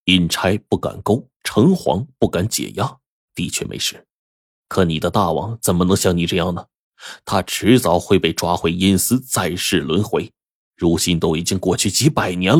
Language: Chinese